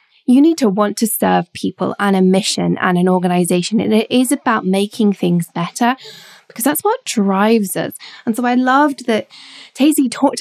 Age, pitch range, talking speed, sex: 20-39, 185-255 Hz, 185 wpm, female